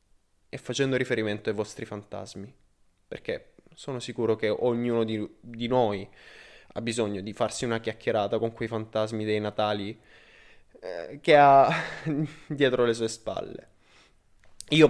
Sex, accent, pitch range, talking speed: male, native, 105-130 Hz, 135 wpm